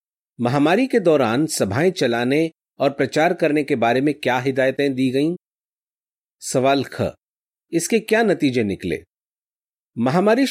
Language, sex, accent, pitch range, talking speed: Hindi, male, native, 125-175 Hz, 125 wpm